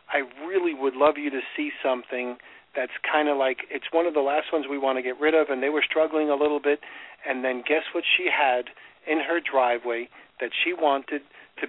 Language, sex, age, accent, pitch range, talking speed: English, male, 40-59, American, 130-155 Hz, 225 wpm